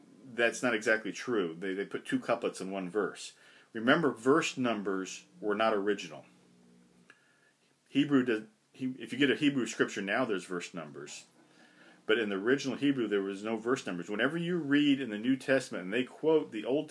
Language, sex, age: English, male, 40-59